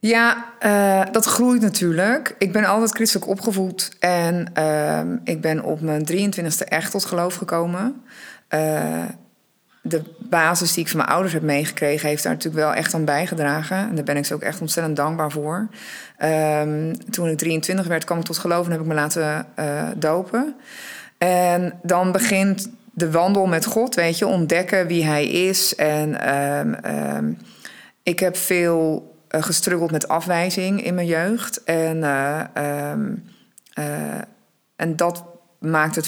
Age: 20-39